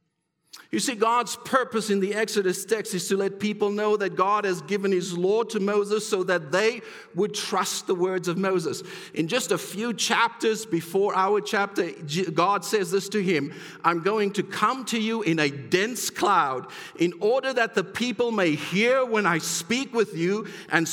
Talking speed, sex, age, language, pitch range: 190 wpm, male, 50-69, English, 185-240 Hz